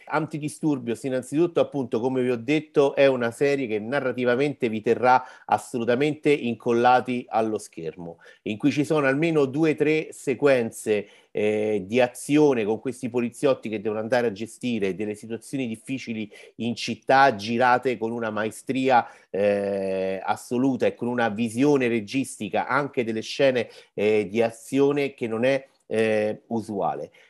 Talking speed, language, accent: 145 wpm, Italian, native